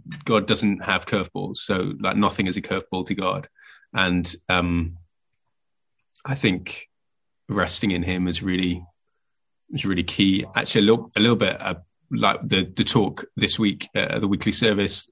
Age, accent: 20-39, British